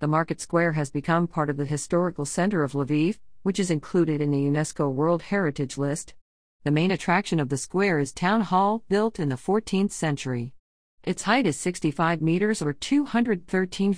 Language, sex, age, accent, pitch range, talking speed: English, female, 50-69, American, 145-200 Hz, 180 wpm